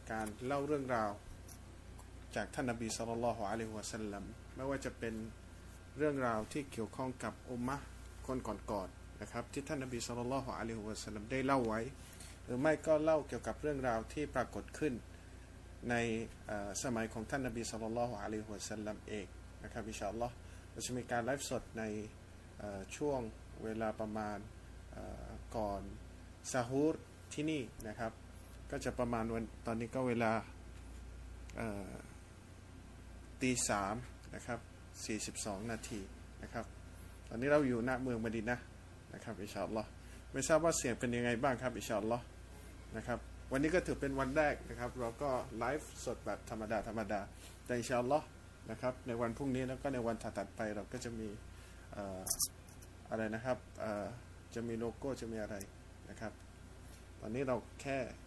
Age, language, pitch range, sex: 20-39, English, 95-120 Hz, male